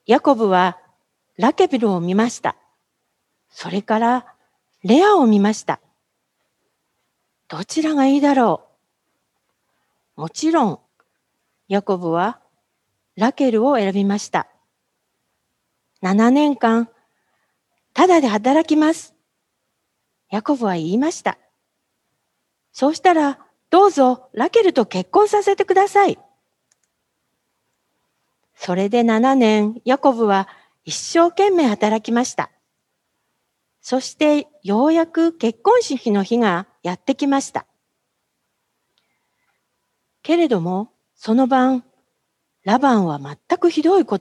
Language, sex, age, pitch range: Japanese, female, 40-59, 210-295 Hz